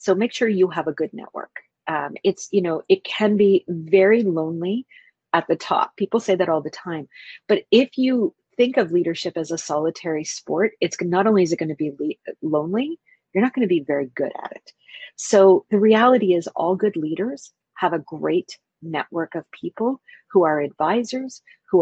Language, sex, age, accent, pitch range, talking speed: English, female, 40-59, American, 165-210 Hz, 195 wpm